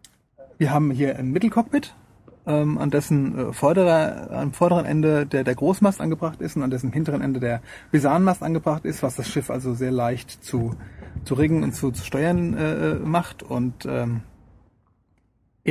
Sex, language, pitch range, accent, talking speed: male, German, 120-155 Hz, German, 170 wpm